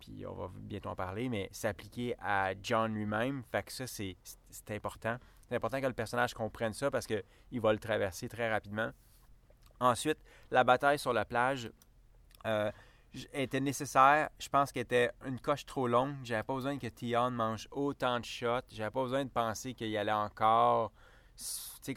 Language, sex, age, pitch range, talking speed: French, male, 30-49, 115-135 Hz, 185 wpm